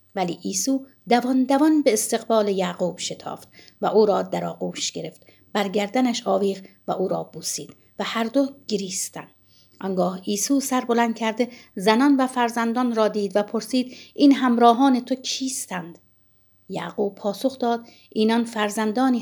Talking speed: 140 wpm